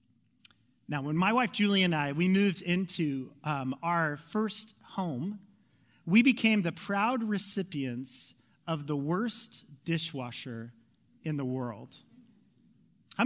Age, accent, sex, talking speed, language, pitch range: 30-49, American, male, 120 wpm, English, 160-220 Hz